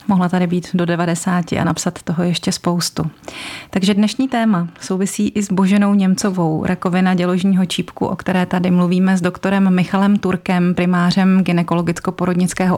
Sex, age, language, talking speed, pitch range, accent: female, 30-49, Czech, 145 wpm, 175-195 Hz, native